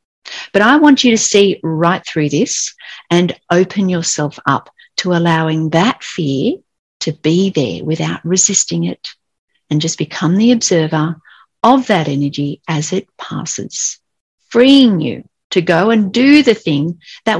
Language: English